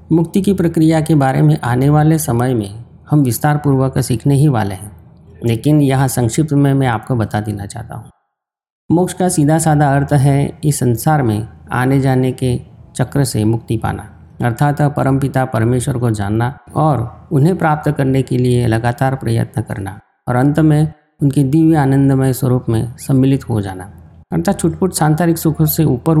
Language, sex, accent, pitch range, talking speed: Hindi, male, native, 115-150 Hz, 165 wpm